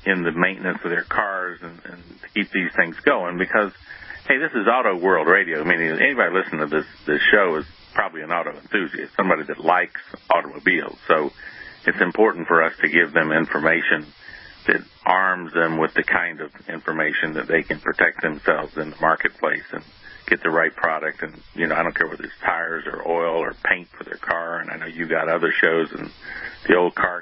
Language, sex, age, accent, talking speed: English, male, 50-69, American, 205 wpm